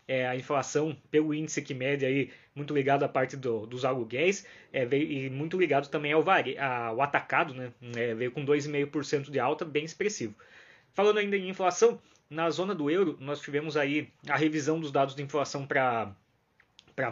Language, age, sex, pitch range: Portuguese, 20-39, male, 140-170 Hz